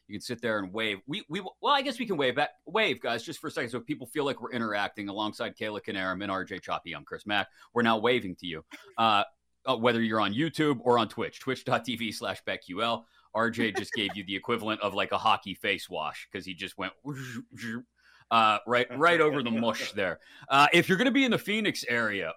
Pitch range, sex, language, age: 105-140 Hz, male, English, 30-49